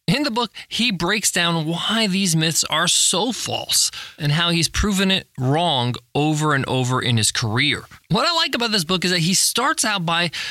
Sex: male